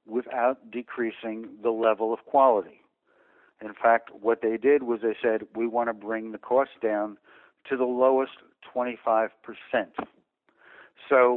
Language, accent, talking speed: English, American, 140 wpm